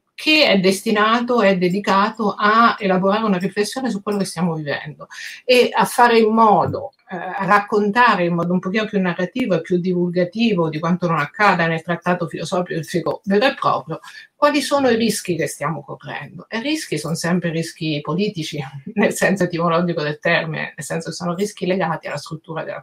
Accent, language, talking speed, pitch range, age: native, Italian, 180 wpm, 175-215 Hz, 50-69